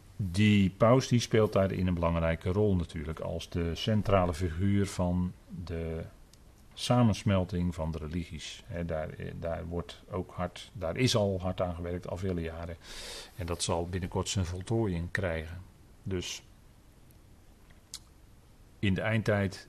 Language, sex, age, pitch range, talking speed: Dutch, male, 40-59, 90-110 Hz, 135 wpm